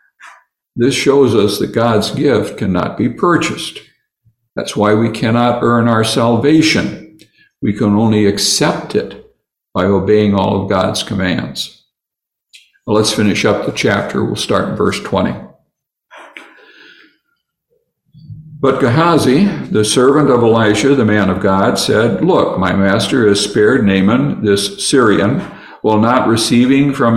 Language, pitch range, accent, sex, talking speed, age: English, 105-145 Hz, American, male, 135 wpm, 60-79